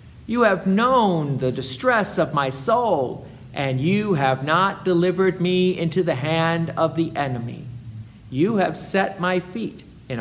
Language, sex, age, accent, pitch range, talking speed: English, male, 50-69, American, 130-185 Hz, 155 wpm